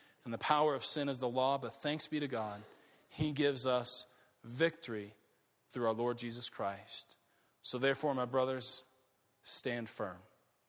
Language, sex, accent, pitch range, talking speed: English, male, American, 130-210 Hz, 155 wpm